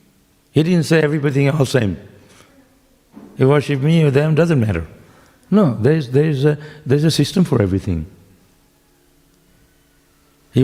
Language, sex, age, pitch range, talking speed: English, male, 60-79, 110-155 Hz, 135 wpm